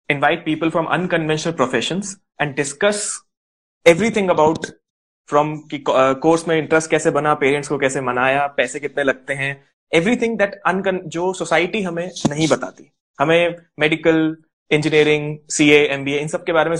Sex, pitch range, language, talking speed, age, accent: male, 140-180 Hz, Hindi, 145 wpm, 20-39, native